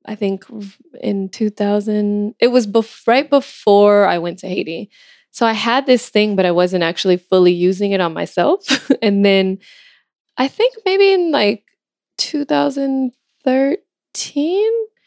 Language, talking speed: English, 135 wpm